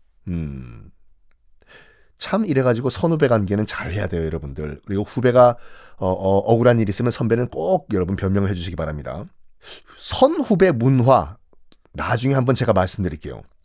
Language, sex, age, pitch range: Korean, male, 40-59, 105-175 Hz